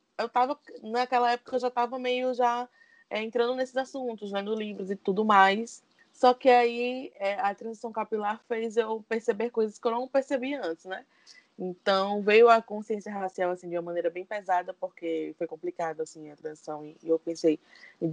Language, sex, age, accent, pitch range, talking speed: Portuguese, female, 20-39, Brazilian, 175-220 Hz, 190 wpm